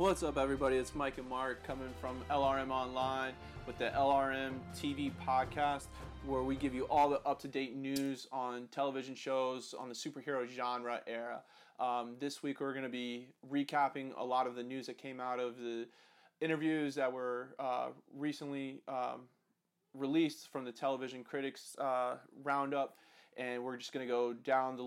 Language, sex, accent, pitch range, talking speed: English, male, American, 125-140 Hz, 170 wpm